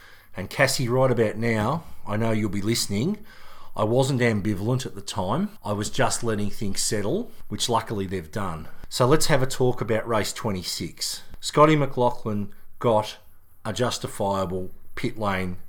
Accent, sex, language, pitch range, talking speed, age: Australian, male, English, 95-115 Hz, 155 wpm, 40-59